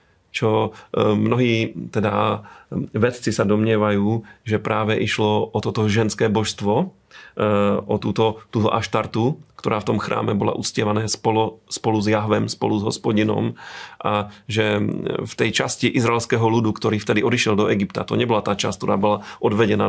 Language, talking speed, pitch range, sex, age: Slovak, 150 wpm, 105-110 Hz, male, 30-49